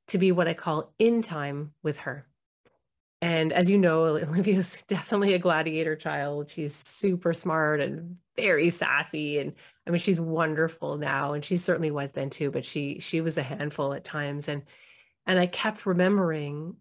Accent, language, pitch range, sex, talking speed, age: American, English, 155-185 Hz, female, 175 wpm, 30-49